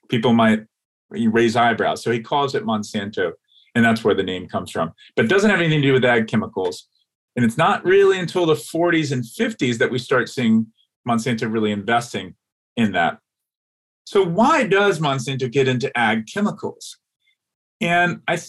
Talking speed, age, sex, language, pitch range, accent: 175 wpm, 30-49, male, English, 115-160 Hz, American